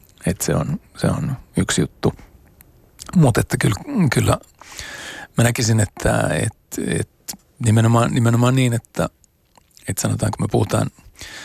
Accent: native